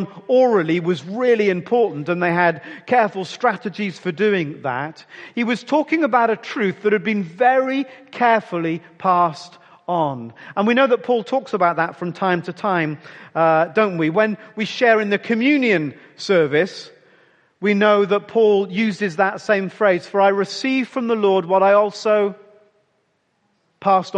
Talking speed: 160 wpm